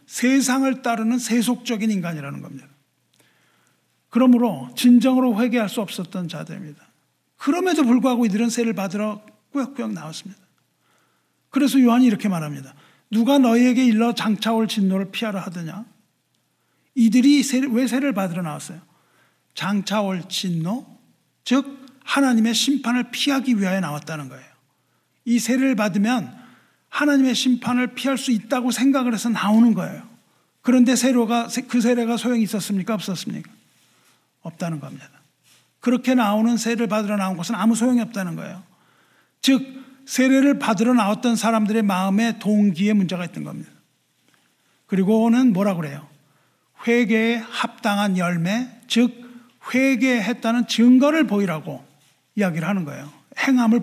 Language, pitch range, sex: Korean, 190-245 Hz, male